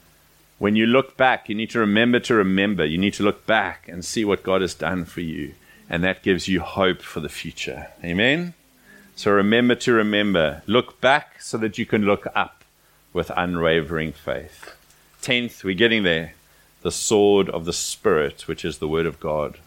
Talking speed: 190 wpm